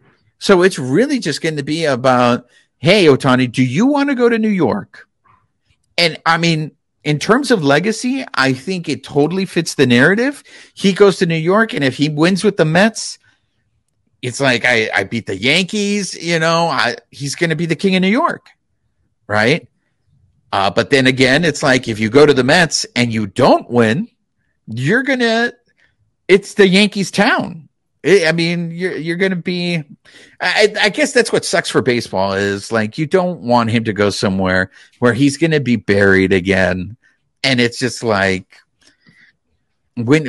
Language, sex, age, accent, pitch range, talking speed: English, male, 50-69, American, 120-190 Hz, 180 wpm